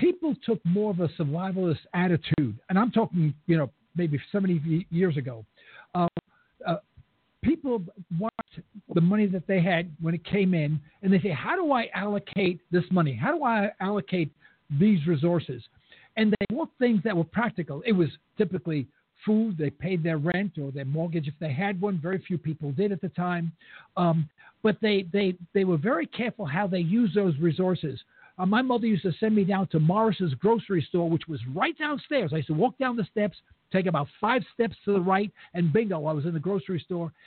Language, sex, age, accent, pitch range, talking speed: English, male, 60-79, American, 170-220 Hz, 200 wpm